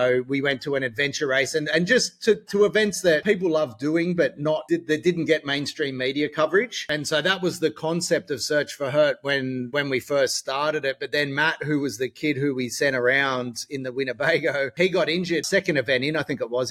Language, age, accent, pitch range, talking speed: English, 30-49, Australian, 130-160 Hz, 235 wpm